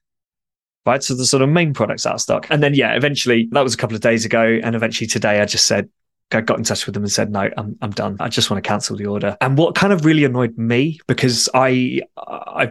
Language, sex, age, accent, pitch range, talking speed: English, male, 20-39, British, 110-130 Hz, 265 wpm